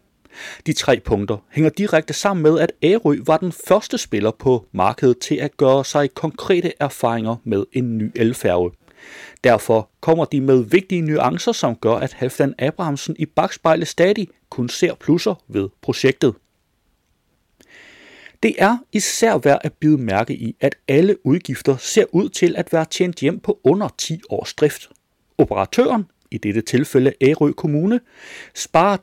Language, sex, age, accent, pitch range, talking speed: Danish, male, 30-49, native, 130-190 Hz, 155 wpm